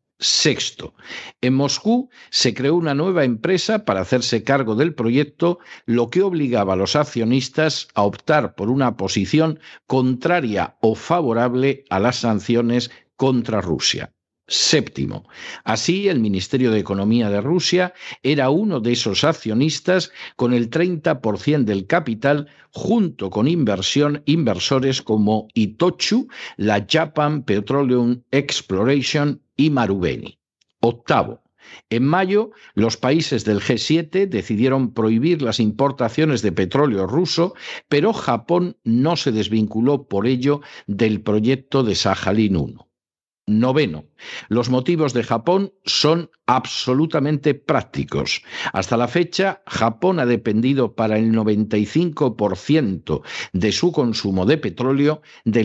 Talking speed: 120 wpm